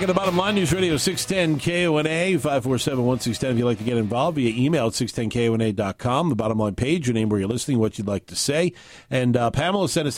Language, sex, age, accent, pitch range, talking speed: English, male, 50-69, American, 115-135 Hz, 240 wpm